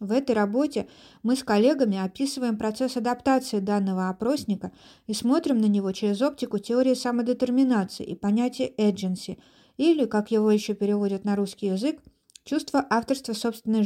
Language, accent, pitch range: Russian, native, 200-255 Hz